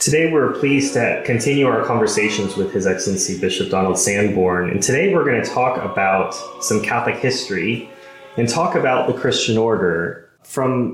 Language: English